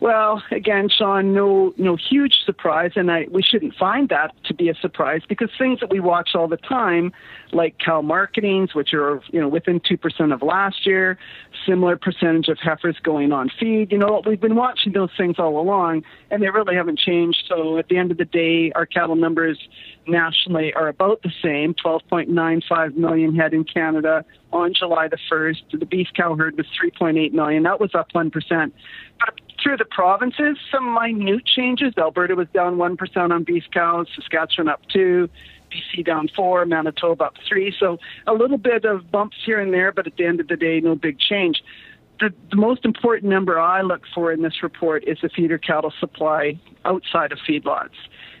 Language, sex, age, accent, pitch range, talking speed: English, male, 40-59, American, 165-200 Hz, 185 wpm